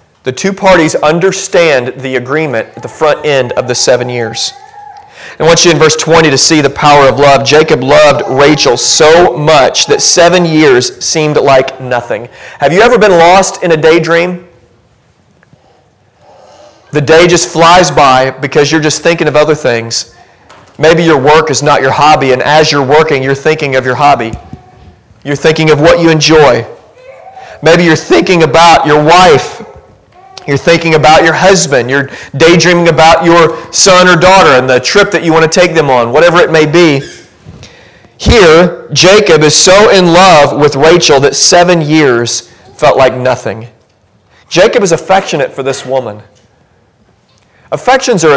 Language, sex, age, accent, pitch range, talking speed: English, male, 40-59, American, 135-170 Hz, 165 wpm